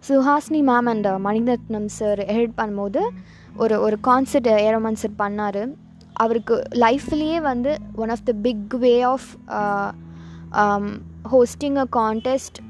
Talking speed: 120 wpm